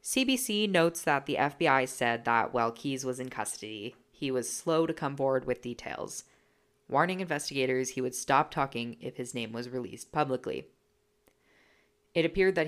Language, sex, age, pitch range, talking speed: English, female, 10-29, 130-160 Hz, 165 wpm